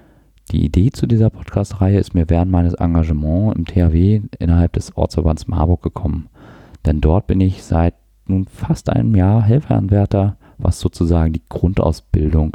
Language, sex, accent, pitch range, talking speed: German, male, German, 85-105 Hz, 150 wpm